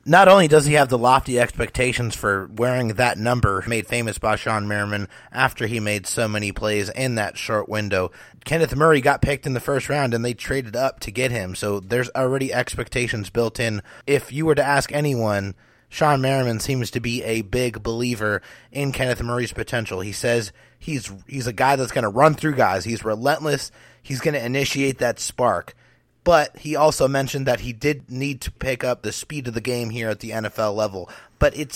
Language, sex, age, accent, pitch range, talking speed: English, male, 30-49, American, 110-135 Hz, 205 wpm